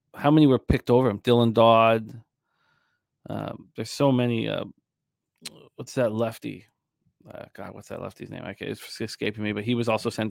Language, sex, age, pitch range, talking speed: English, male, 30-49, 120-150 Hz, 185 wpm